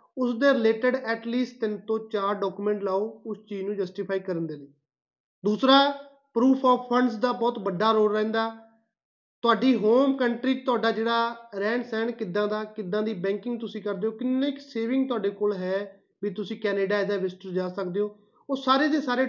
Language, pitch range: Punjabi, 205-235 Hz